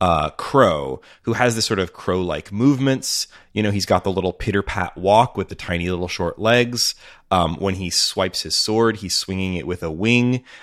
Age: 30-49